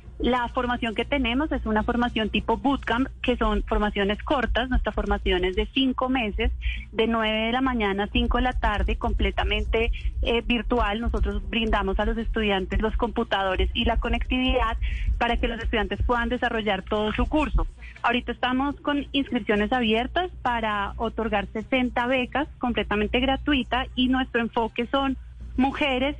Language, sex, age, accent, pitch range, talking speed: Spanish, female, 30-49, Colombian, 215-245 Hz, 155 wpm